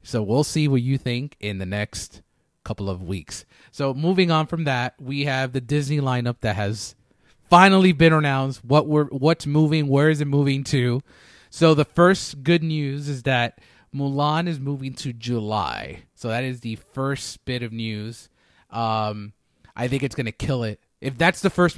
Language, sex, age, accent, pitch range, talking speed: English, male, 30-49, American, 110-145 Hz, 185 wpm